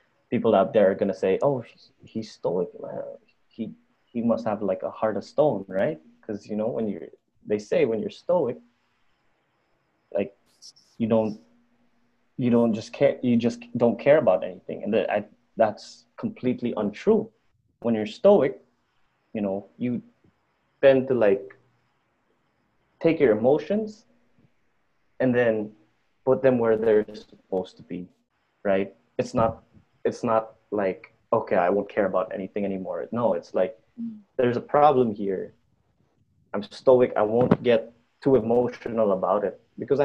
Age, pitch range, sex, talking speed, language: 20-39, 105-135 Hz, male, 145 wpm, English